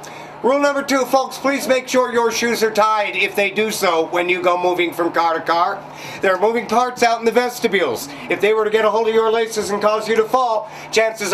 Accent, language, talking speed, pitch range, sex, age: American, English, 250 wpm, 180-230 Hz, male, 50-69